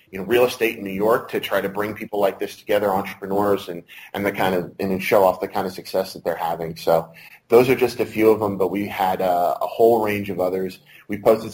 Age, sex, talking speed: 30-49, male, 260 wpm